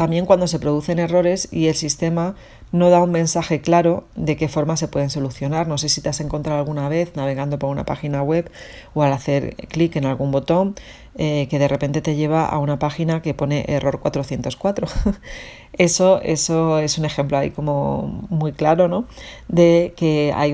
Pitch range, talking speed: 145-165 Hz, 185 wpm